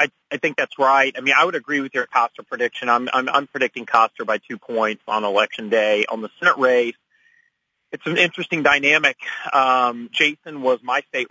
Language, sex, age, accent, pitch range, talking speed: English, male, 30-49, American, 120-145 Hz, 200 wpm